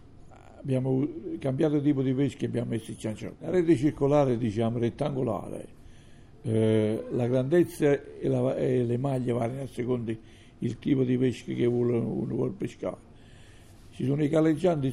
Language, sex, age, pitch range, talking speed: Italian, male, 60-79, 115-145 Hz, 155 wpm